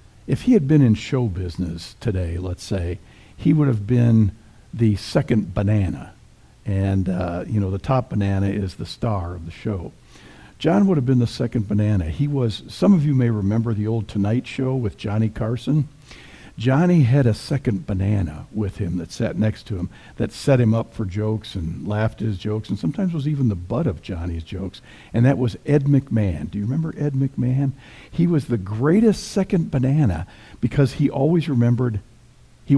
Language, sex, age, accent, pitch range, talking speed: English, male, 60-79, American, 105-135 Hz, 190 wpm